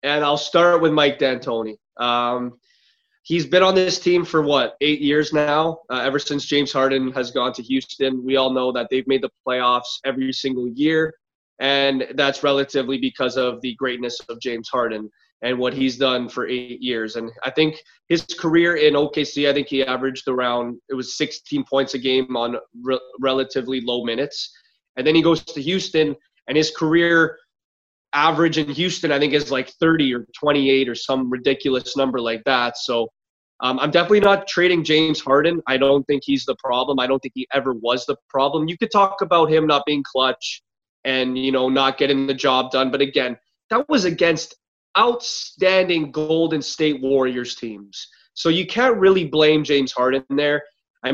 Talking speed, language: 185 wpm, English